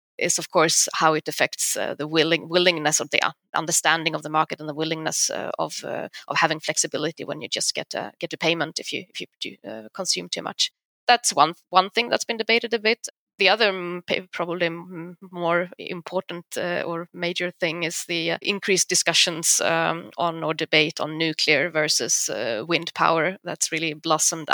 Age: 20-39